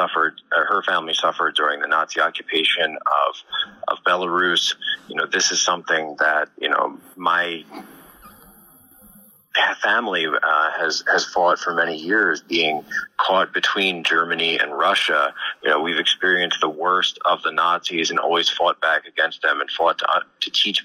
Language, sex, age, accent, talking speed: English, male, 30-49, American, 160 wpm